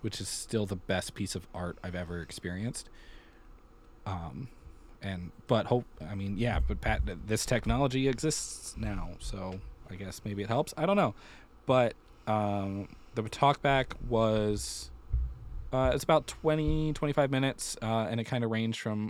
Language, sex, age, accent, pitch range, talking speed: English, male, 20-39, American, 100-120 Hz, 165 wpm